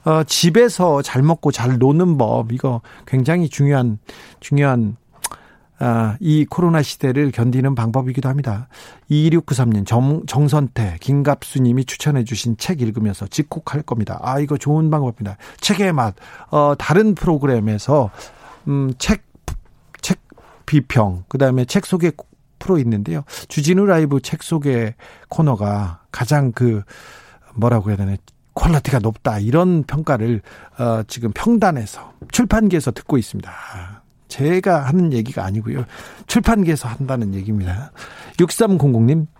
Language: Korean